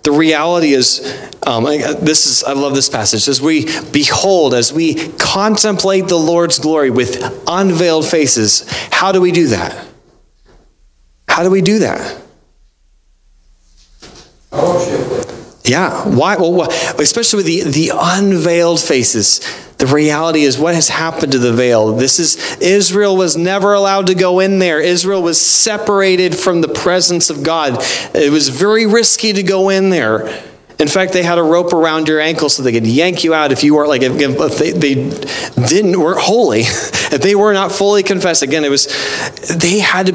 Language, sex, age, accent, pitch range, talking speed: English, male, 30-49, American, 135-185 Hz, 170 wpm